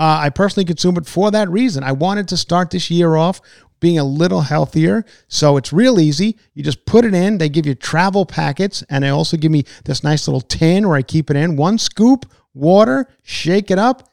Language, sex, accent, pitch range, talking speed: English, male, American, 135-175 Hz, 225 wpm